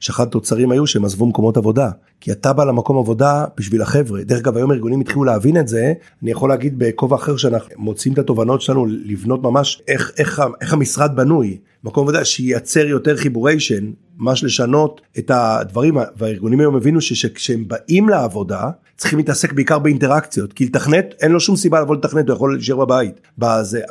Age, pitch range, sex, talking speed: 50-69, 115-150 Hz, male, 175 wpm